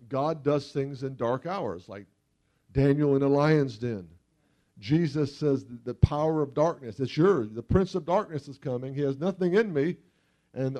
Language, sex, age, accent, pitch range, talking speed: English, male, 50-69, American, 135-175 Hz, 180 wpm